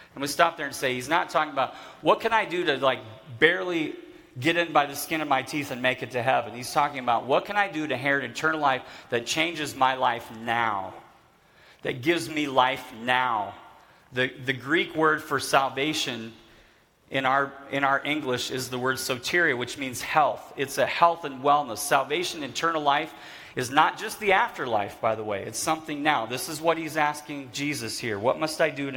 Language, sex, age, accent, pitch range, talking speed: English, male, 40-59, American, 130-160 Hz, 205 wpm